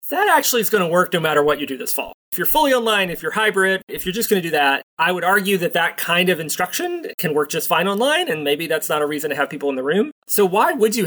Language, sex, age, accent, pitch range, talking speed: English, male, 30-49, American, 145-200 Hz, 305 wpm